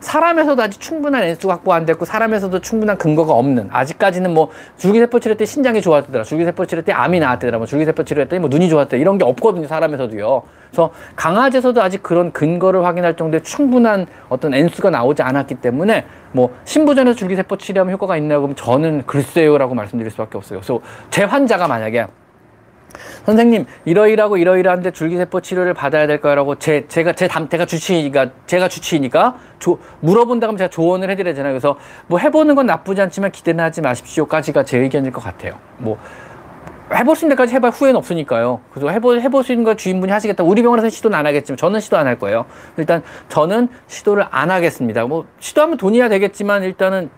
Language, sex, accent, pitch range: Korean, male, native, 150-210 Hz